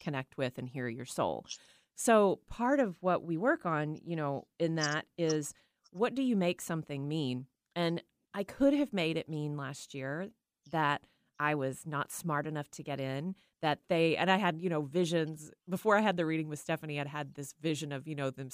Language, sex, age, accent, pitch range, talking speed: English, female, 30-49, American, 145-180 Hz, 210 wpm